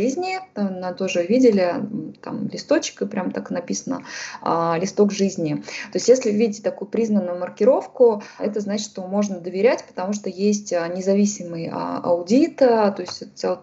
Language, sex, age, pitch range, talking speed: Russian, female, 20-39, 175-215 Hz, 140 wpm